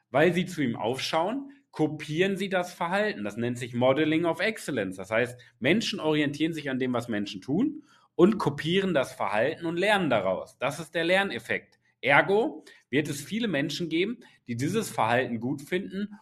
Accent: German